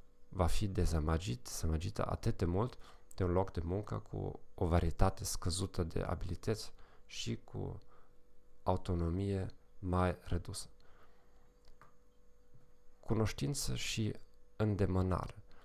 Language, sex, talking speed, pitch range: English, male, 95 wpm, 90-105 Hz